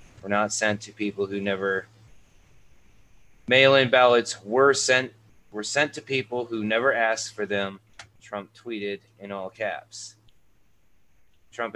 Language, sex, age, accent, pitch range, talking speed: English, male, 30-49, American, 100-115 Hz, 135 wpm